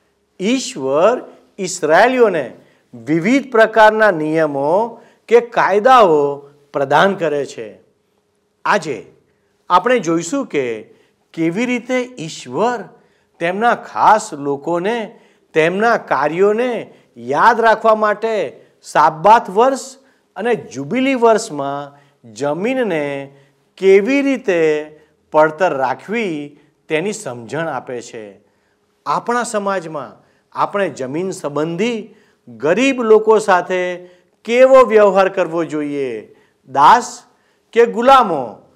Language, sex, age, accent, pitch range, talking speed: Gujarati, male, 50-69, native, 155-235 Hz, 80 wpm